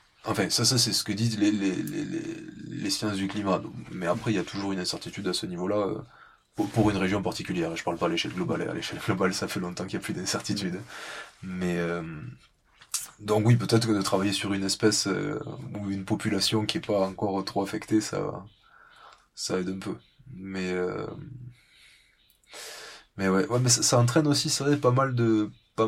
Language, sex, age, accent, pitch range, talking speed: French, male, 20-39, French, 95-115 Hz, 220 wpm